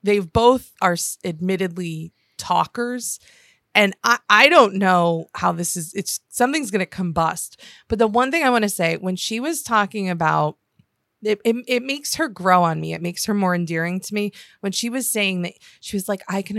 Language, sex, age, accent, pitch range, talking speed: English, female, 20-39, American, 175-215 Hz, 200 wpm